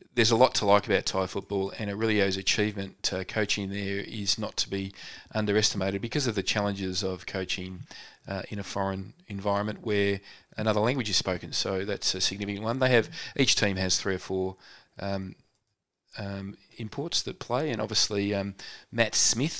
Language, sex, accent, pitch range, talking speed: English, male, Australian, 95-110 Hz, 185 wpm